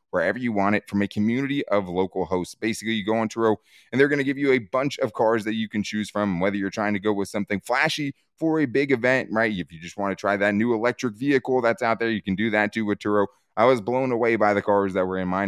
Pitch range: 100-130 Hz